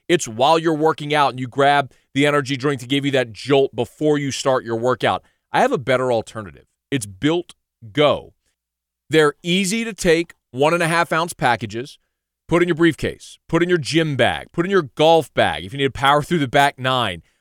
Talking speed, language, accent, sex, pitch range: 200 wpm, English, American, male, 130-170 Hz